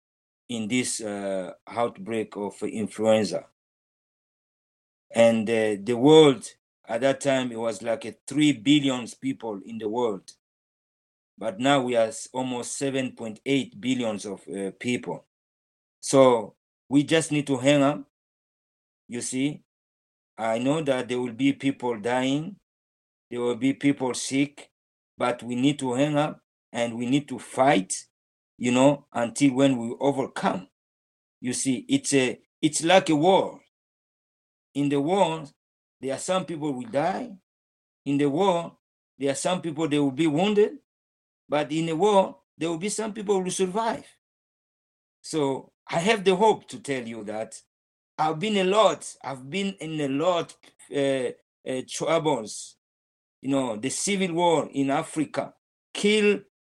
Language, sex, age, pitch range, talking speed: English, male, 50-69, 115-155 Hz, 150 wpm